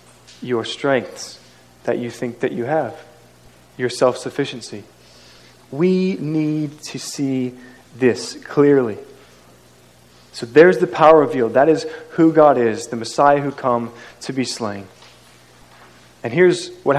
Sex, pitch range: male, 115-150 Hz